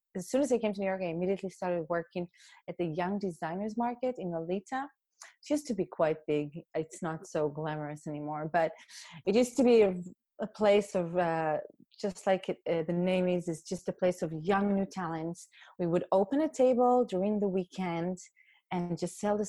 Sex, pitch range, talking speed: female, 170-210 Hz, 205 wpm